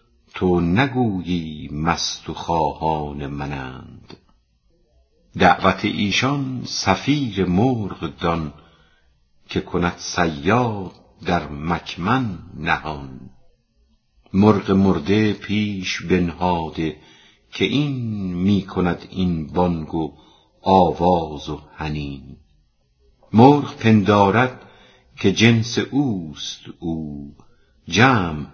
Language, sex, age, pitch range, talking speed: Persian, female, 50-69, 75-105 Hz, 80 wpm